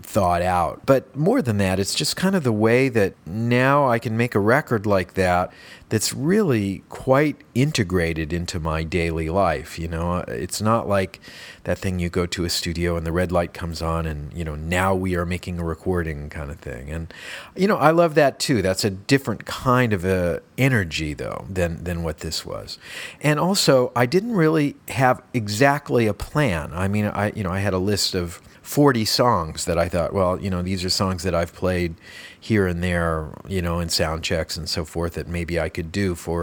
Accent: American